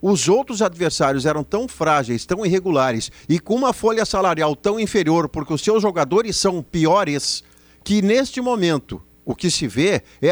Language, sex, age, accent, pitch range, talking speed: Portuguese, male, 50-69, Brazilian, 140-205 Hz, 170 wpm